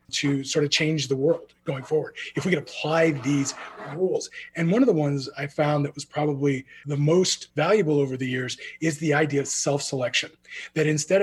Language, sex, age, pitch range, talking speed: English, male, 30-49, 140-175 Hz, 200 wpm